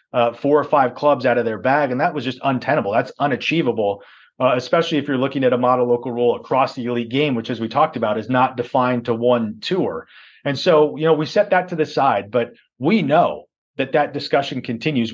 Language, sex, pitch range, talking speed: English, male, 125-155 Hz, 230 wpm